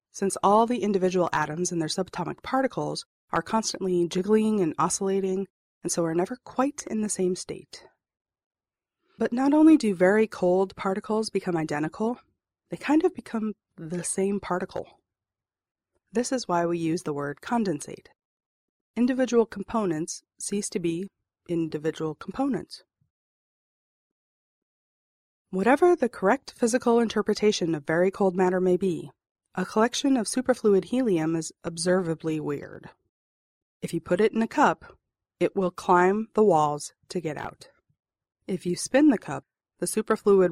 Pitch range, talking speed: 165-220 Hz, 140 wpm